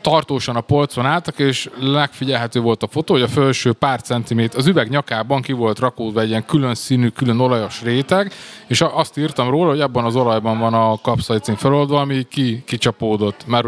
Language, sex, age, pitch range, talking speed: Hungarian, male, 20-39, 120-145 Hz, 190 wpm